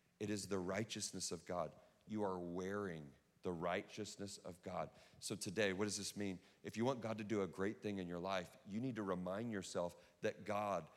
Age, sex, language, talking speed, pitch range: 40-59, male, English, 210 wpm, 95-120 Hz